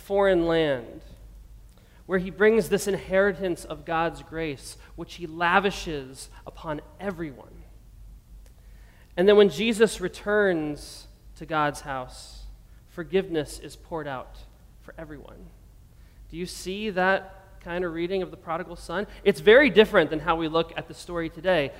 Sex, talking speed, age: male, 140 wpm, 30-49